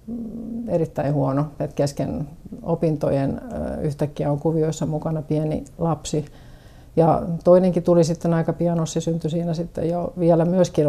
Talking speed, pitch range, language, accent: 130 wpm, 150-170 Hz, Finnish, native